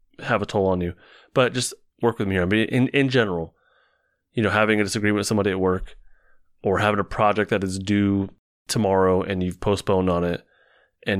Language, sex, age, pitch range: English, male, 30-49, 90-115 Hz